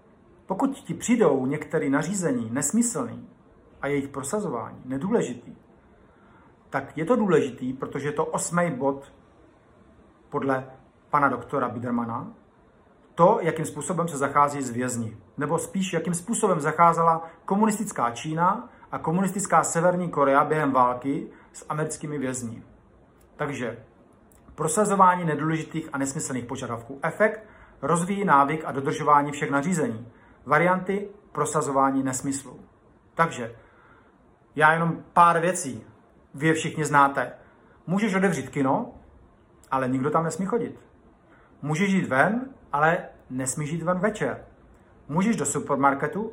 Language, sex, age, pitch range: Slovak, male, 40-59, 135-180 Hz